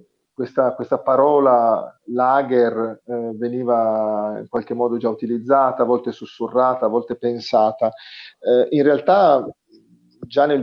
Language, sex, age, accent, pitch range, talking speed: Italian, male, 40-59, native, 115-130 Hz, 125 wpm